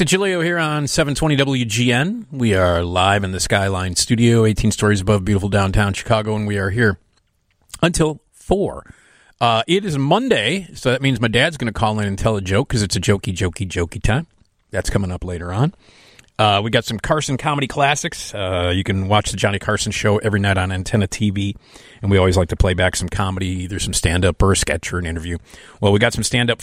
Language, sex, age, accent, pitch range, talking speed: English, male, 40-59, American, 95-130 Hz, 215 wpm